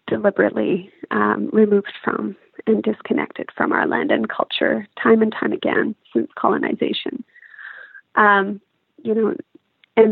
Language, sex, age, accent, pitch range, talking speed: English, female, 30-49, American, 205-255 Hz, 125 wpm